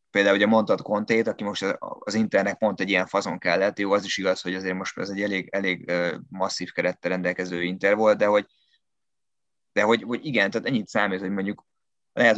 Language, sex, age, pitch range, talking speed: Hungarian, male, 20-39, 95-110 Hz, 205 wpm